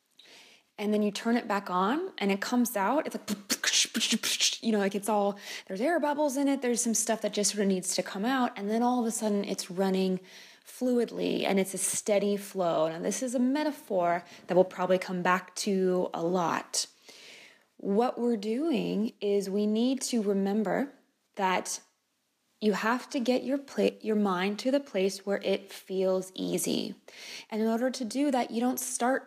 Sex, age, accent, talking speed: female, 20-39, American, 195 wpm